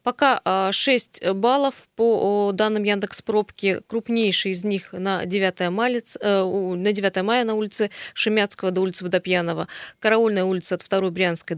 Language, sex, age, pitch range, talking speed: Russian, female, 20-39, 180-215 Hz, 120 wpm